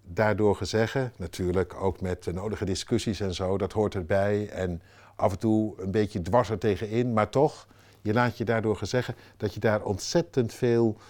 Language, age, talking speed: Dutch, 60-79, 185 wpm